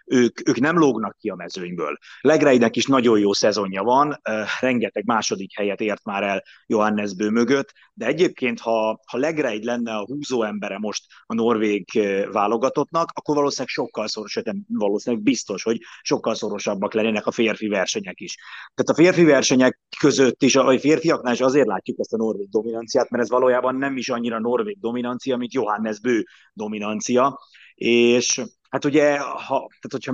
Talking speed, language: 165 wpm, Hungarian